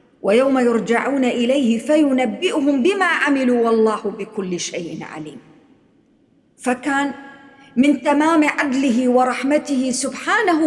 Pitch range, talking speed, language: 215-280 Hz, 90 wpm, English